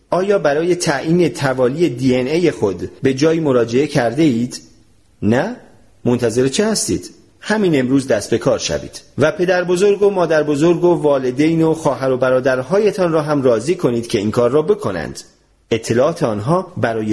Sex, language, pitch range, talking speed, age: male, Persian, 125-175 Hz, 160 wpm, 40-59